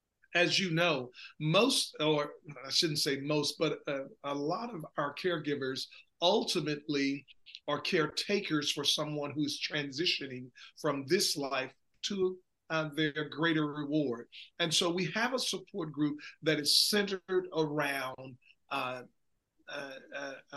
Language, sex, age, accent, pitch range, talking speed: English, male, 40-59, American, 145-170 Hz, 130 wpm